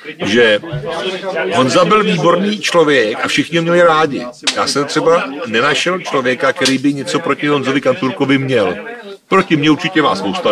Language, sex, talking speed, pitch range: Czech, male, 155 wpm, 135-190 Hz